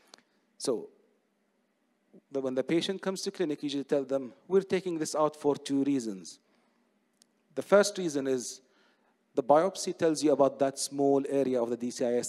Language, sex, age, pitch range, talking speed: English, male, 40-59, 135-165 Hz, 160 wpm